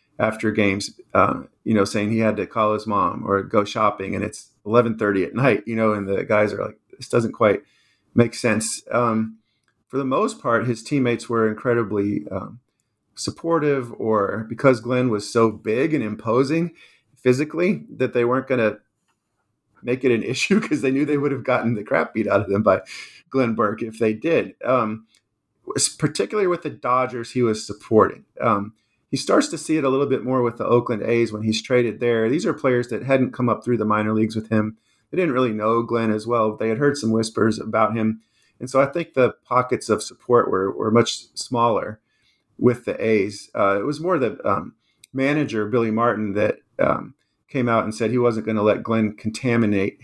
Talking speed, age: 205 wpm, 40-59